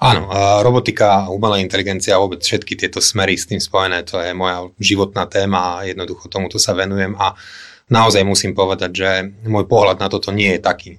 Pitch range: 95-105 Hz